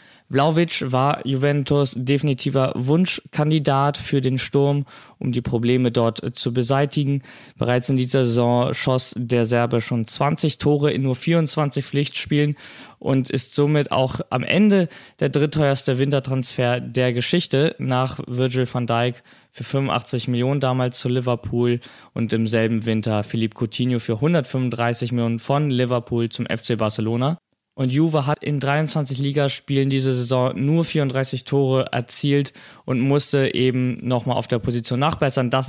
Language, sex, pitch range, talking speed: German, male, 125-145 Hz, 140 wpm